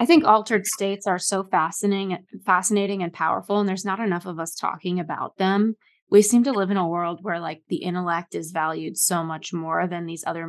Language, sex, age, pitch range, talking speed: English, female, 20-39, 180-200 Hz, 225 wpm